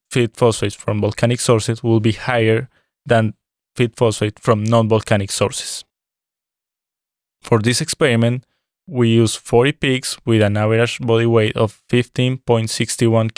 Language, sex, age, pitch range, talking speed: English, male, 20-39, 110-125 Hz, 125 wpm